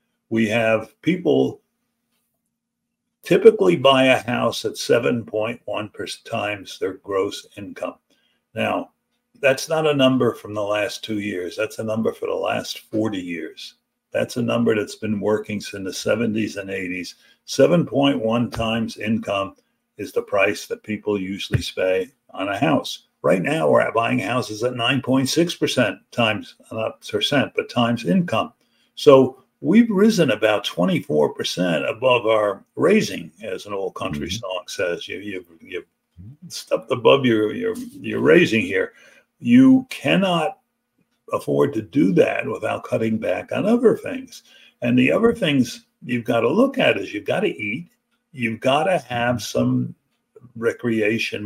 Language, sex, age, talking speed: English, male, 60-79, 140 wpm